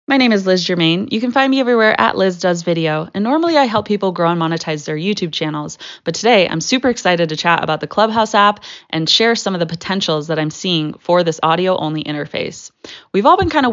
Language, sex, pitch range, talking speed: English, female, 160-205 Hz, 235 wpm